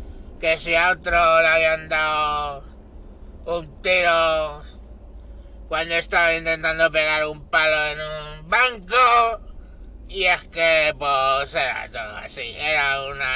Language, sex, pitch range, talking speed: Spanish, male, 145-180 Hz, 120 wpm